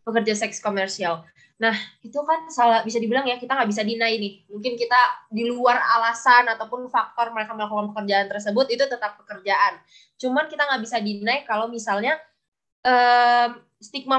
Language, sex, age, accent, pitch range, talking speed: Indonesian, female, 20-39, native, 220-260 Hz, 160 wpm